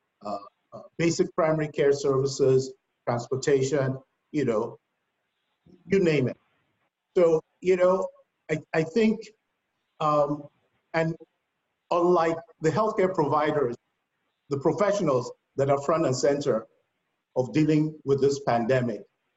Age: 50-69